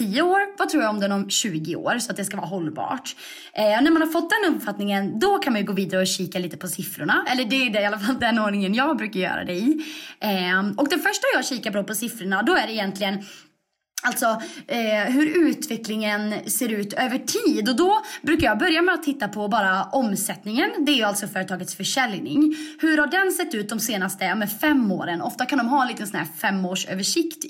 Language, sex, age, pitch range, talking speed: Swedish, female, 20-39, 200-310 Hz, 230 wpm